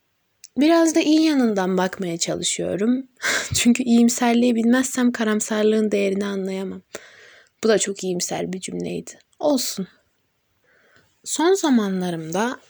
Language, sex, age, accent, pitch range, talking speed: Turkish, female, 20-39, native, 205-265 Hz, 105 wpm